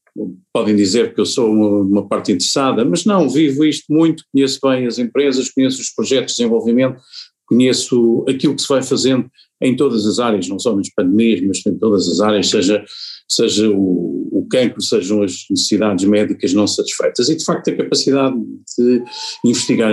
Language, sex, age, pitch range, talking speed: Portuguese, male, 50-69, 120-180 Hz, 180 wpm